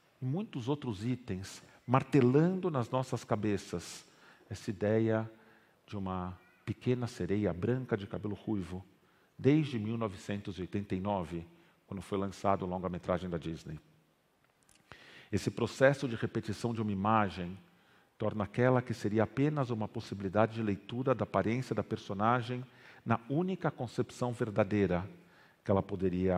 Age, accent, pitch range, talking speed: 50-69, Brazilian, 95-125 Hz, 120 wpm